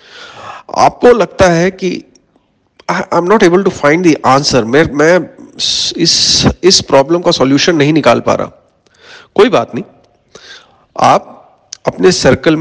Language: English